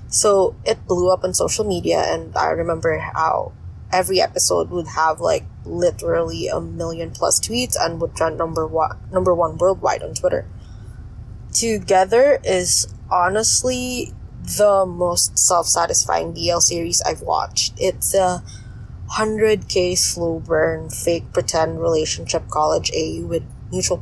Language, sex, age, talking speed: English, female, 20-39, 130 wpm